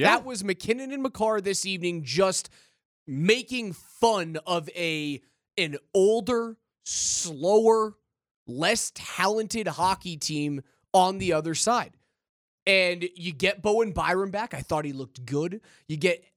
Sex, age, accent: male, 20-39, American